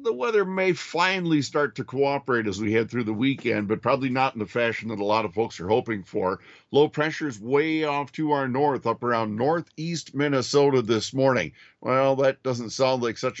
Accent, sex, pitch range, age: American, male, 115-140 Hz, 50-69